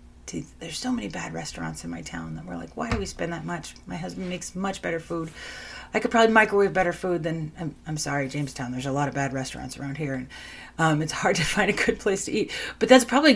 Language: English